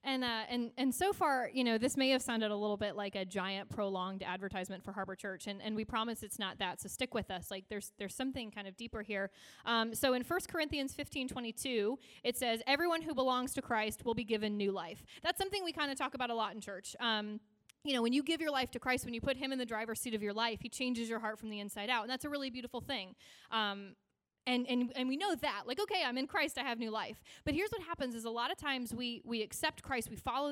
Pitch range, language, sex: 215-260 Hz, English, female